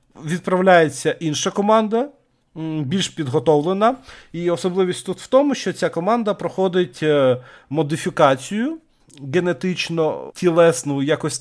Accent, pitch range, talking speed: native, 140-185 Hz, 90 wpm